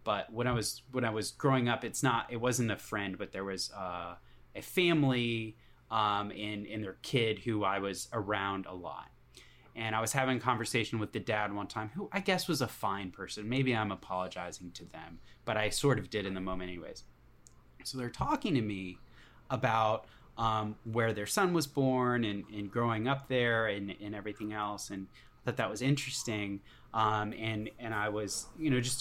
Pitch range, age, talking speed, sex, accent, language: 105-125 Hz, 20-39, 200 wpm, male, American, English